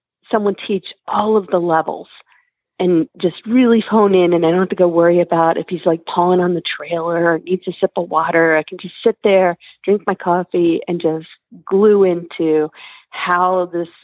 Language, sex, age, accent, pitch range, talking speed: English, female, 40-59, American, 155-190 Hz, 195 wpm